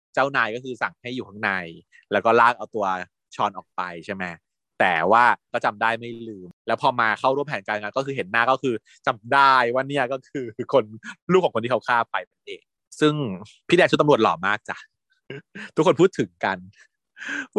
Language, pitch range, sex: Thai, 115-170 Hz, male